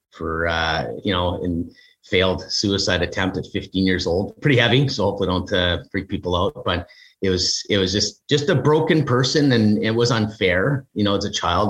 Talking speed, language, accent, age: 205 wpm, English, American, 30-49